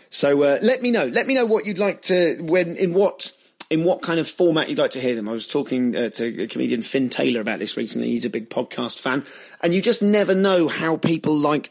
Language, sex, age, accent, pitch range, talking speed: English, male, 30-49, British, 125-175 Hz, 250 wpm